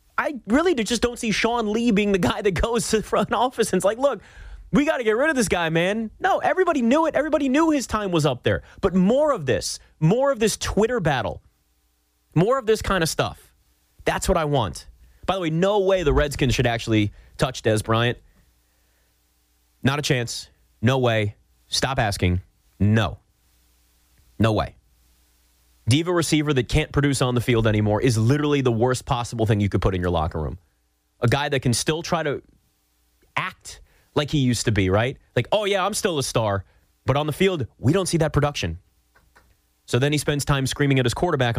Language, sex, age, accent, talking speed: English, male, 30-49, American, 205 wpm